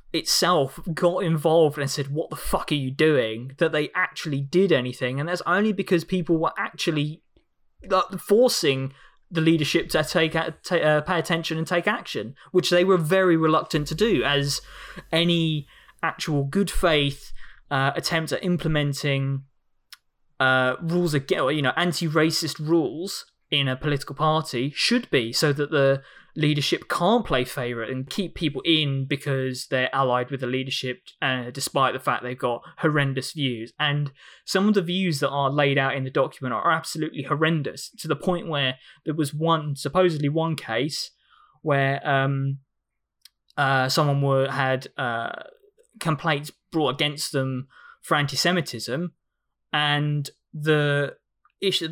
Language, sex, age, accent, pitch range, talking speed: English, male, 20-39, British, 135-165 Hz, 150 wpm